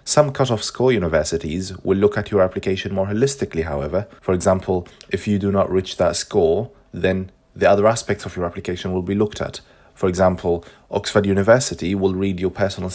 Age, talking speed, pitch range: 30-49, 185 wpm, 90-105 Hz